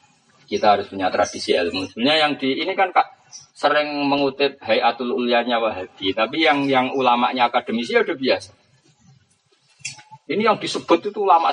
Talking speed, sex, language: 150 wpm, male, Malay